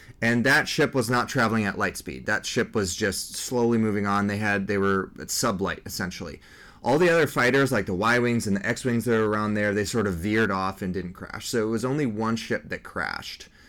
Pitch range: 95-115 Hz